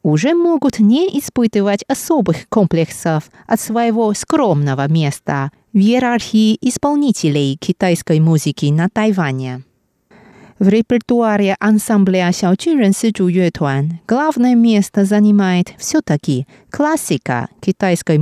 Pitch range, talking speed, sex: 170-235 Hz, 90 wpm, female